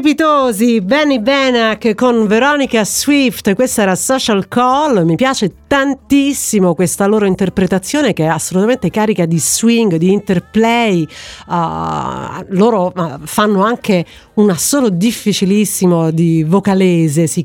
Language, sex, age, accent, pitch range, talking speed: Italian, female, 50-69, native, 170-215 Hz, 115 wpm